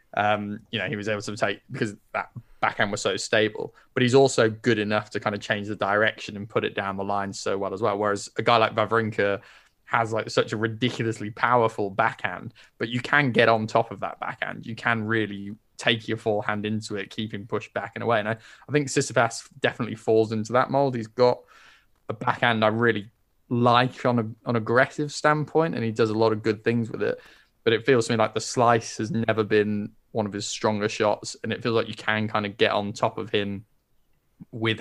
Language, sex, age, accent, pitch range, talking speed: English, male, 20-39, British, 105-120 Hz, 225 wpm